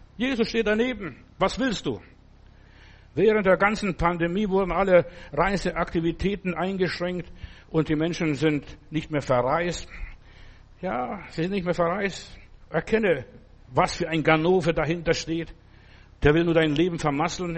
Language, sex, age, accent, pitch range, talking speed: German, male, 60-79, German, 125-180 Hz, 135 wpm